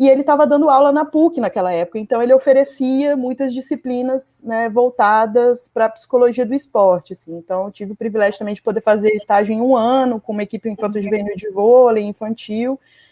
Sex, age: female, 20-39